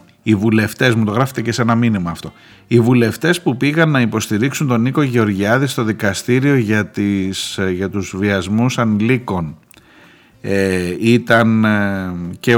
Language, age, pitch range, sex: Greek, 50-69, 100-125 Hz, male